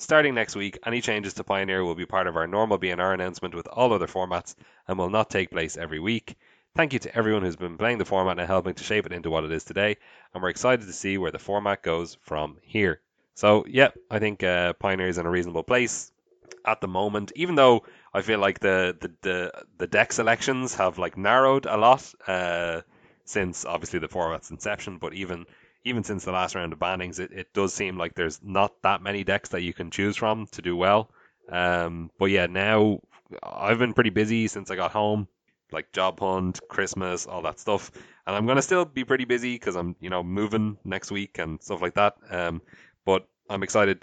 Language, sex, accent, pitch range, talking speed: English, male, Irish, 90-105 Hz, 220 wpm